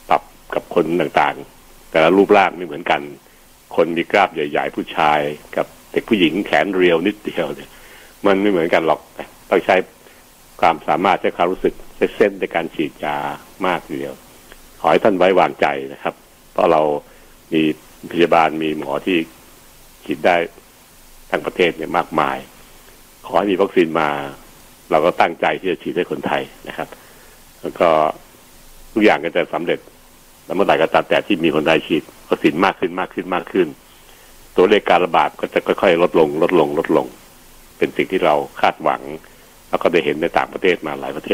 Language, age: Thai, 70-89